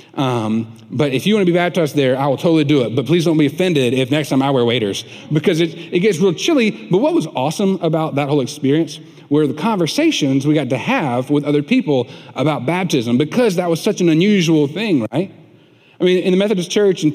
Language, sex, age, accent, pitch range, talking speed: English, male, 40-59, American, 130-170 Hz, 230 wpm